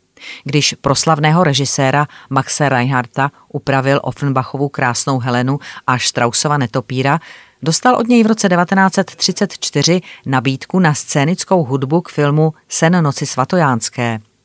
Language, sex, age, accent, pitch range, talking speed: Czech, female, 30-49, native, 130-160 Hz, 110 wpm